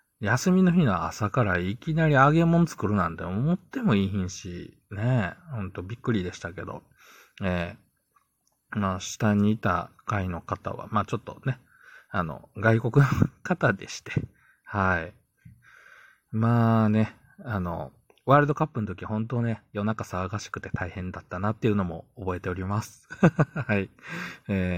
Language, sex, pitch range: Japanese, male, 95-130 Hz